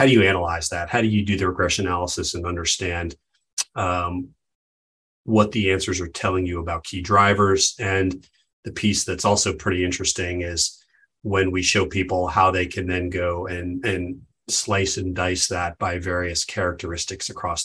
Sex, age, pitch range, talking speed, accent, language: male, 30-49, 90-100 Hz, 175 wpm, American, English